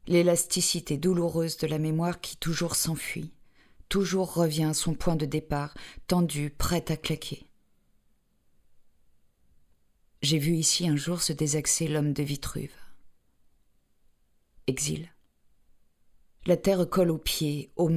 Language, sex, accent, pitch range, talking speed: French, female, French, 145-170 Hz, 120 wpm